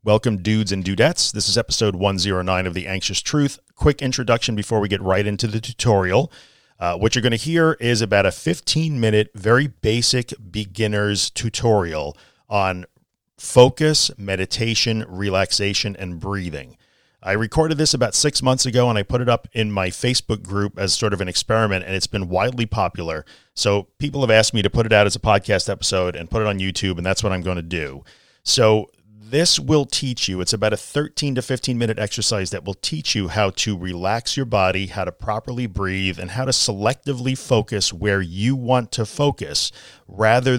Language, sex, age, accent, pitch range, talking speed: English, male, 40-59, American, 95-125 Hz, 190 wpm